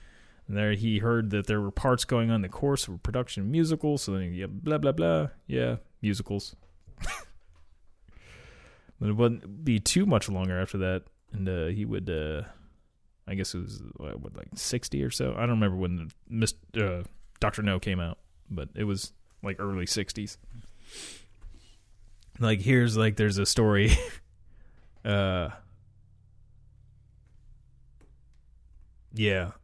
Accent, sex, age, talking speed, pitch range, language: American, male, 20-39, 140 wpm, 85-105 Hz, English